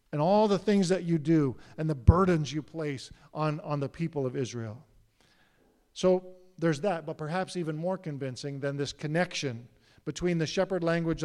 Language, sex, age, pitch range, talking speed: English, male, 50-69, 145-195 Hz, 175 wpm